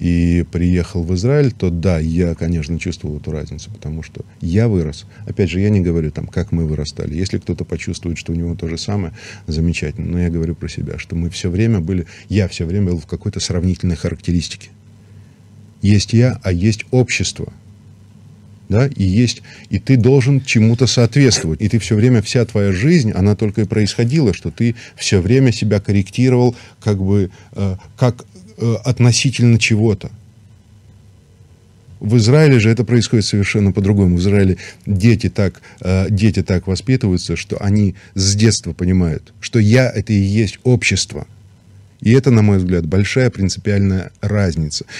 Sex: male